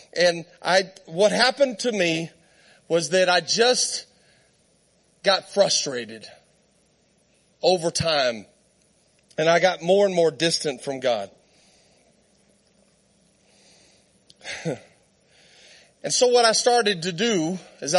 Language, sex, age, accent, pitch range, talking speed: English, male, 40-59, American, 165-235 Hz, 105 wpm